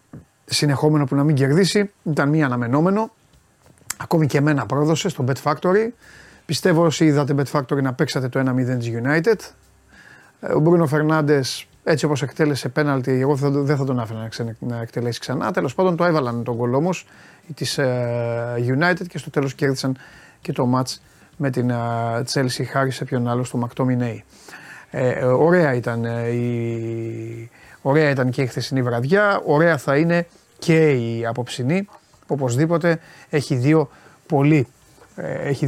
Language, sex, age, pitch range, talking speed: Greek, male, 30-49, 125-165 Hz, 145 wpm